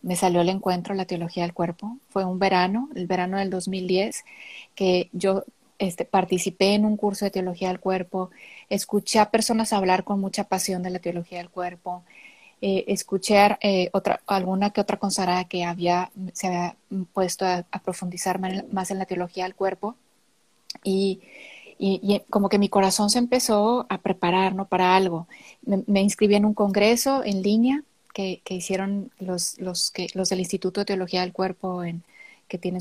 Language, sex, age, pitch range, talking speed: Spanish, female, 30-49, 185-215 Hz, 180 wpm